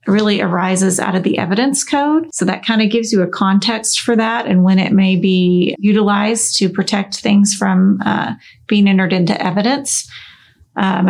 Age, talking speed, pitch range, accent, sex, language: 30-49, 180 wpm, 190-215 Hz, American, female, English